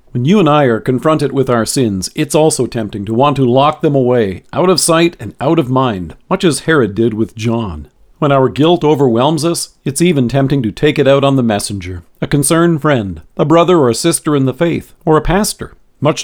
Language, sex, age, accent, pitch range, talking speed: English, male, 50-69, American, 125-165 Hz, 225 wpm